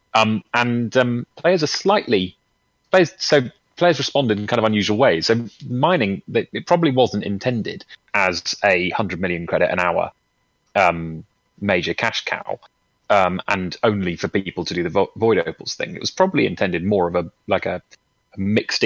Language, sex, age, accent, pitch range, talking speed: English, male, 30-49, British, 95-120 Hz, 175 wpm